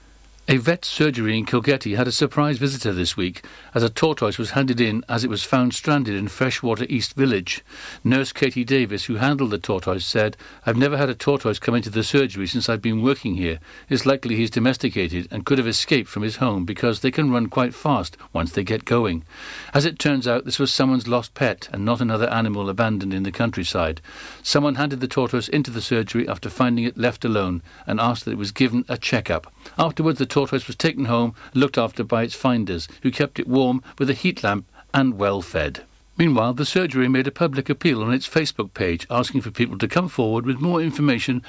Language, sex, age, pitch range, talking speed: English, male, 60-79, 110-140 Hz, 215 wpm